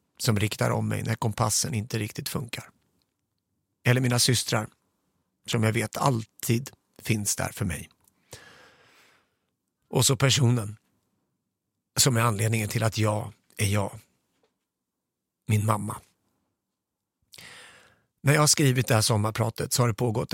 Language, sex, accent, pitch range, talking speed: English, male, Swedish, 110-135 Hz, 130 wpm